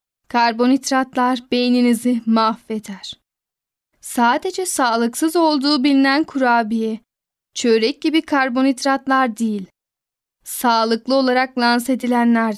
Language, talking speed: Turkish, 75 wpm